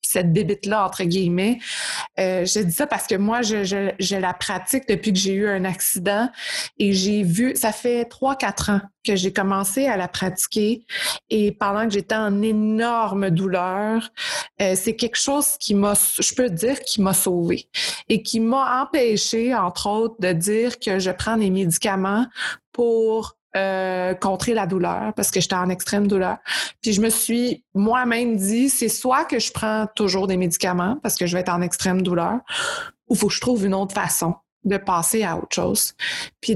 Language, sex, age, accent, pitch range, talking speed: French, female, 20-39, Canadian, 190-235 Hz, 185 wpm